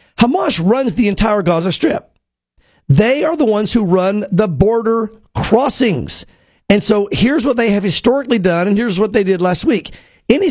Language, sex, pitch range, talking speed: English, male, 190-240 Hz, 175 wpm